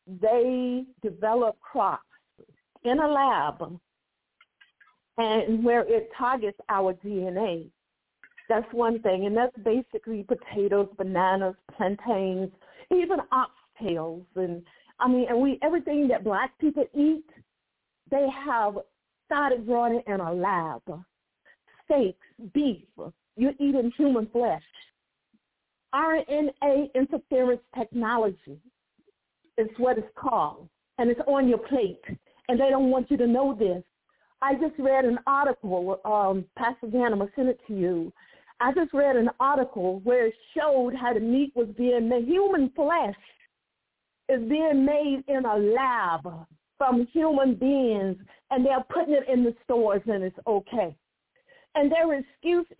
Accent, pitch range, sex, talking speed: American, 205-275 Hz, female, 130 wpm